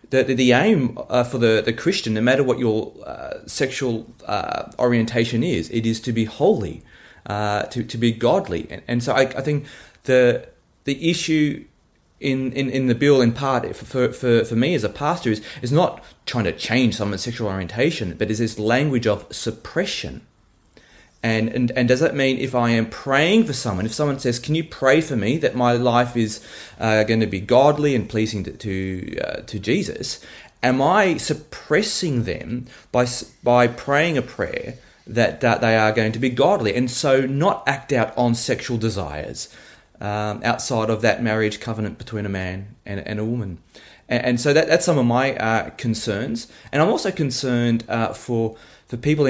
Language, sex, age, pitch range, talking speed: English, male, 30-49, 110-130 Hz, 190 wpm